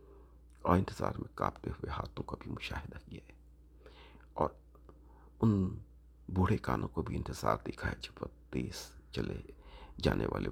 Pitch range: 65-80 Hz